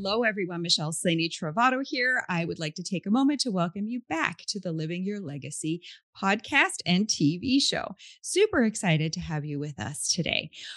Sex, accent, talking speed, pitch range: female, American, 190 wpm, 175-275 Hz